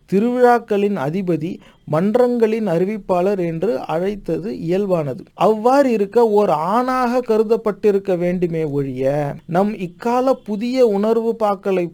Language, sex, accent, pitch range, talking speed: Tamil, male, native, 170-225 Hz, 95 wpm